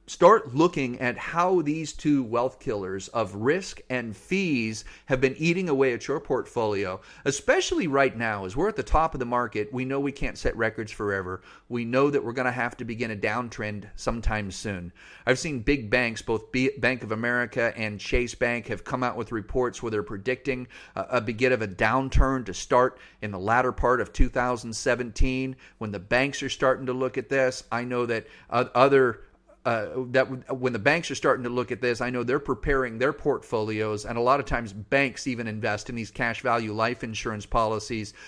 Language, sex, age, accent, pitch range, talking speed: English, male, 40-59, American, 110-130 Hz, 200 wpm